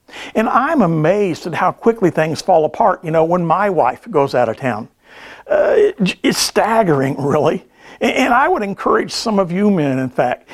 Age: 50-69